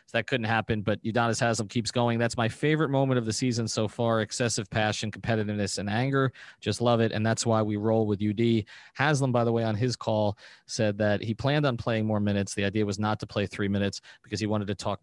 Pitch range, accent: 105-125 Hz, American